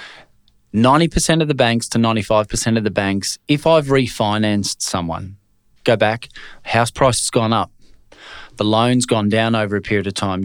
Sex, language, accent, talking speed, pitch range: male, English, Australian, 160 wpm, 100-120 Hz